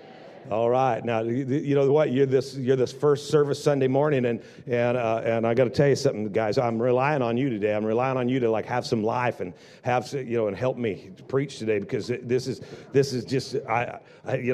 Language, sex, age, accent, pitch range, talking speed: English, male, 50-69, American, 135-180 Hz, 235 wpm